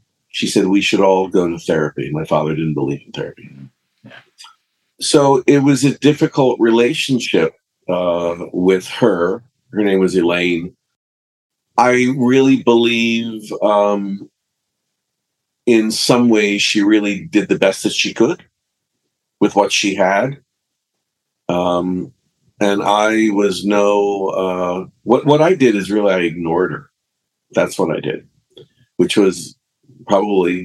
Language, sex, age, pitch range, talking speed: English, male, 50-69, 95-120 Hz, 135 wpm